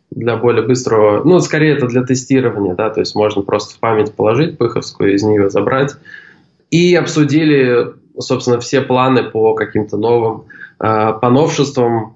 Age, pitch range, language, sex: 20-39, 115-135 Hz, Russian, male